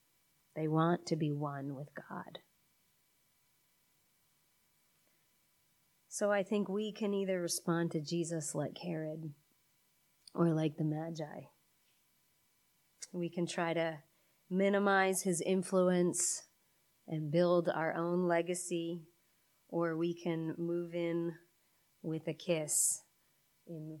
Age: 30-49